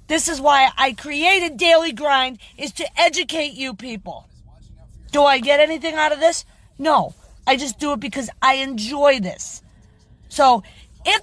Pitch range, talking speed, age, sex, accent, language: 215-290 Hz, 160 wpm, 40-59, female, American, English